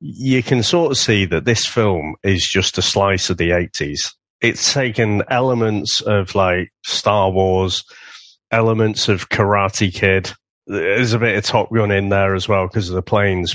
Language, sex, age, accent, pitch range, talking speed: English, male, 30-49, British, 95-125 Hz, 175 wpm